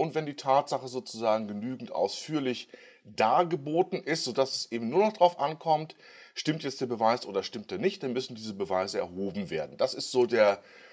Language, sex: German, male